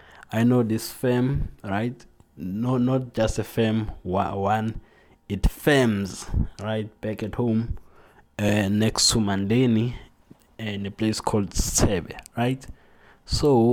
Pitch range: 95-115 Hz